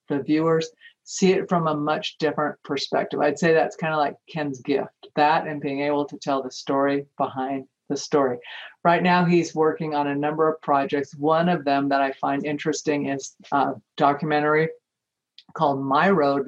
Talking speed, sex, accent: 180 wpm, female, American